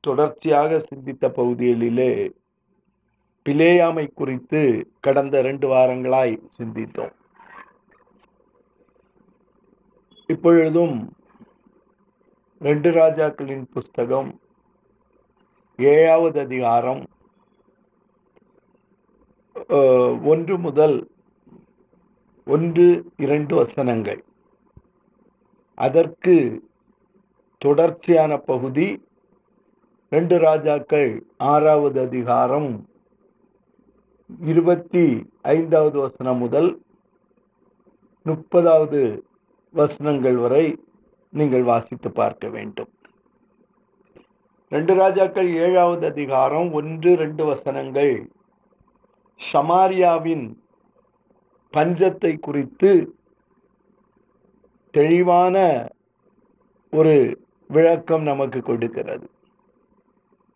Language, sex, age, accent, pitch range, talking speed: Tamil, male, 50-69, native, 140-175 Hz, 55 wpm